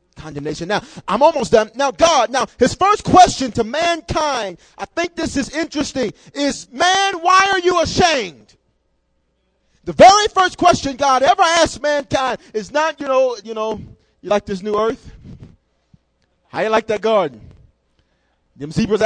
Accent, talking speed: American, 155 wpm